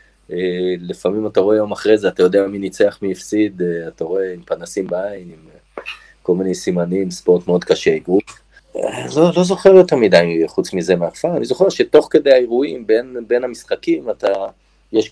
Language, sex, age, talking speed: Hebrew, male, 30-49, 185 wpm